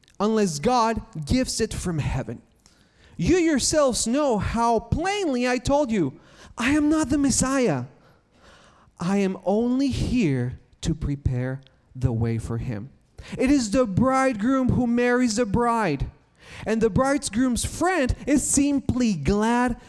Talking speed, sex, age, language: 135 wpm, male, 30-49, English